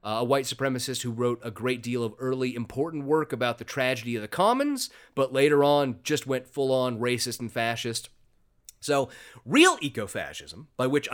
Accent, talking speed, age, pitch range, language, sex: American, 185 wpm, 30-49, 125-165 Hz, English, male